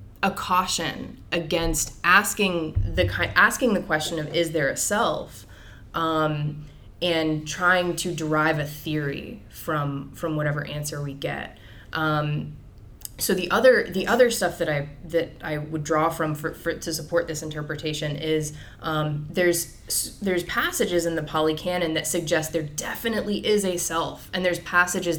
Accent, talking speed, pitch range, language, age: American, 155 wpm, 150-175 Hz, English, 20-39